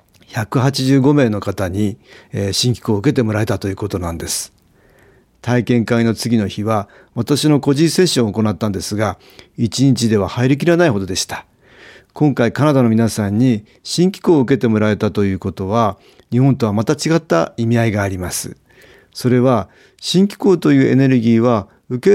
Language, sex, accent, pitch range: Japanese, male, native, 105-140 Hz